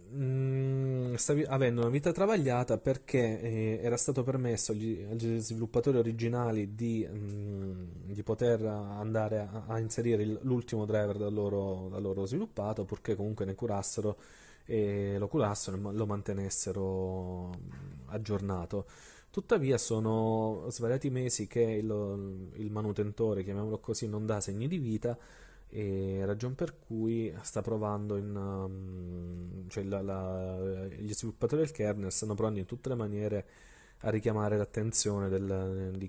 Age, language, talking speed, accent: 20-39, Italian, 125 wpm, native